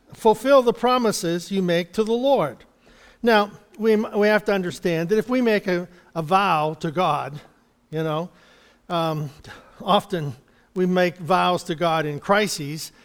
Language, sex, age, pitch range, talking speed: English, male, 50-69, 165-215 Hz, 155 wpm